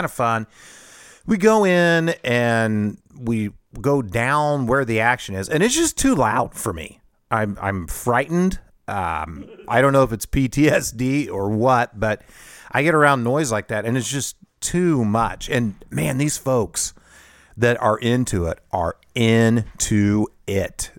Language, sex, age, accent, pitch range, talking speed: English, male, 40-59, American, 105-140 Hz, 155 wpm